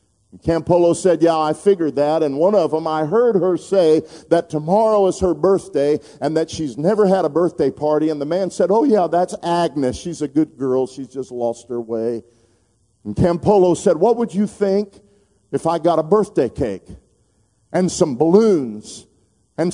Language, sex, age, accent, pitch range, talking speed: English, male, 50-69, American, 155-195 Hz, 190 wpm